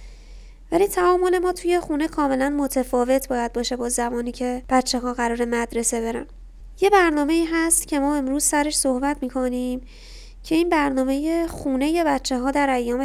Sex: female